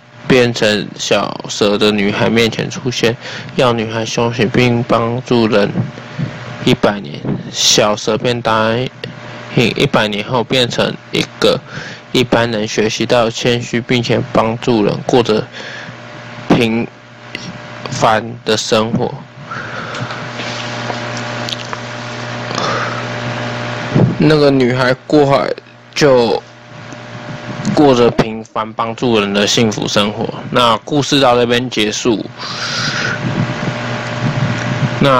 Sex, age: male, 20-39